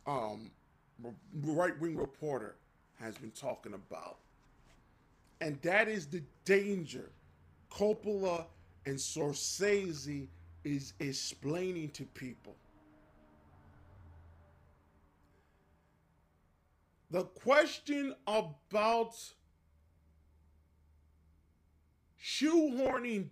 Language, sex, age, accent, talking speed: English, male, 40-59, American, 60 wpm